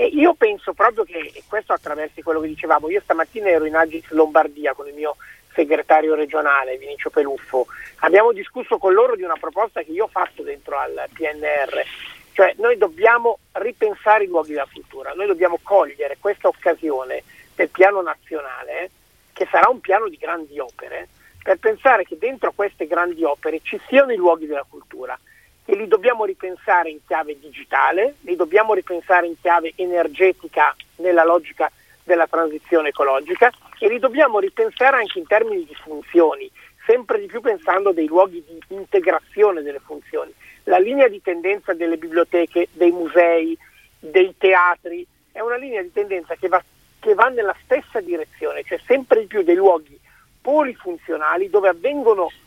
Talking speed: 160 wpm